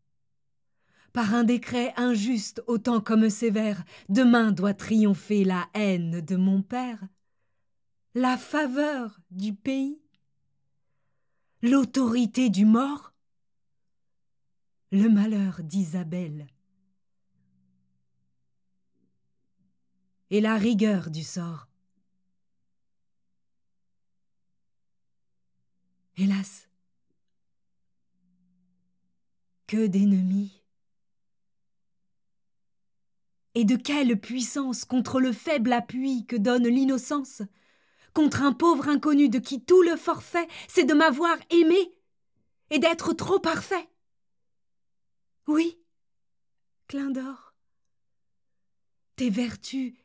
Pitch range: 175-245 Hz